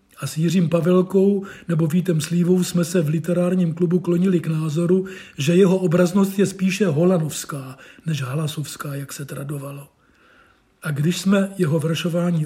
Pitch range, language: 165-190 Hz, Czech